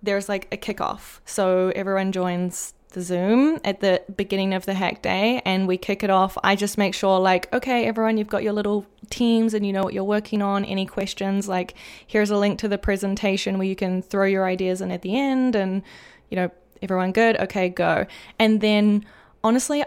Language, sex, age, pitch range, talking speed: English, female, 20-39, 185-210 Hz, 210 wpm